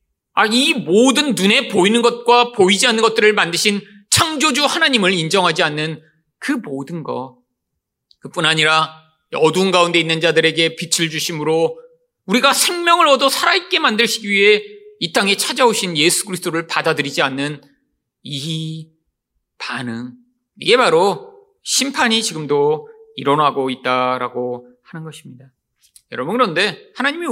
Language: Korean